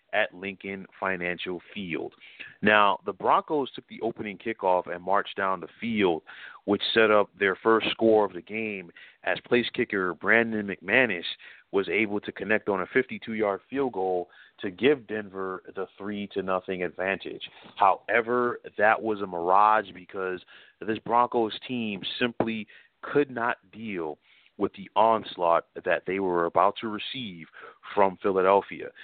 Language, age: English, 40-59